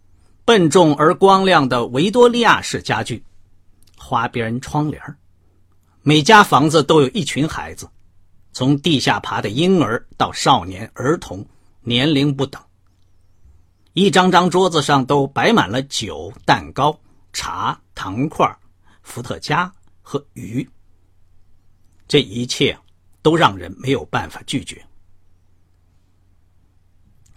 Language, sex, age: Chinese, male, 50-69